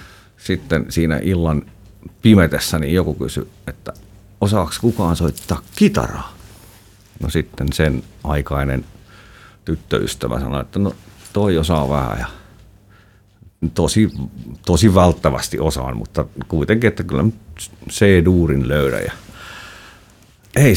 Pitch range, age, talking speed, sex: 80-105 Hz, 50-69, 105 wpm, male